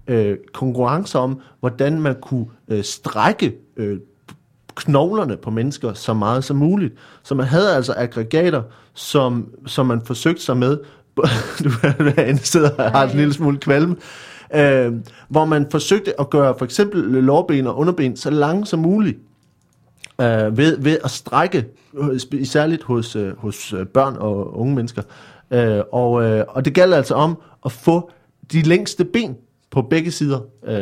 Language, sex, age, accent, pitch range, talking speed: Danish, male, 30-49, native, 120-150 Hz, 135 wpm